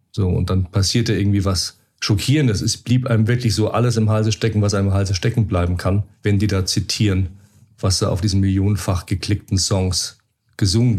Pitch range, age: 95-115 Hz, 40-59